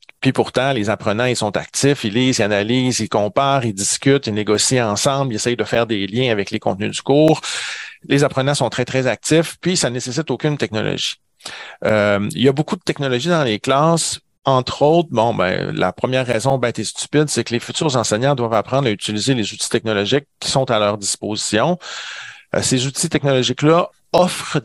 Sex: male